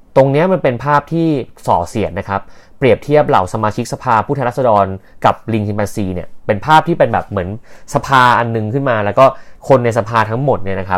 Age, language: 30-49, Thai